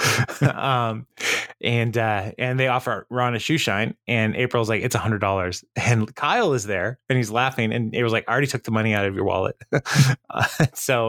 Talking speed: 210 wpm